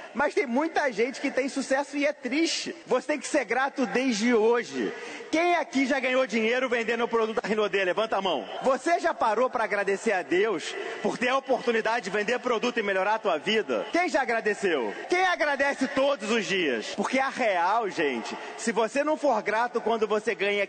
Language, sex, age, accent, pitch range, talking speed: Portuguese, male, 30-49, Brazilian, 220-275 Hz, 200 wpm